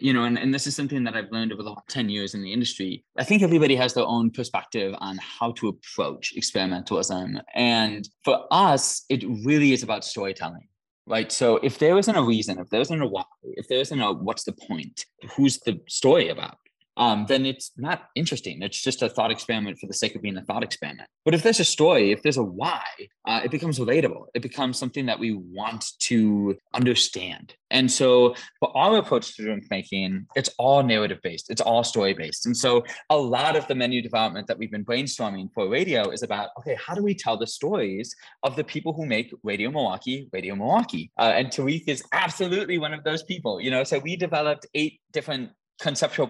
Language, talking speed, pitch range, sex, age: English, 210 wpm, 110-150 Hz, male, 20-39